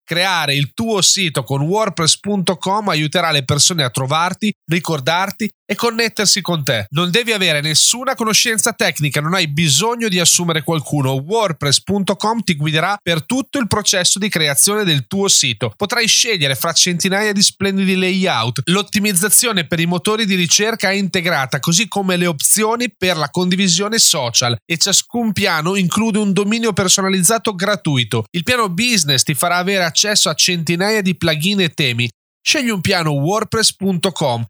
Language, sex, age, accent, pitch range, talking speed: Italian, male, 30-49, native, 155-210 Hz, 155 wpm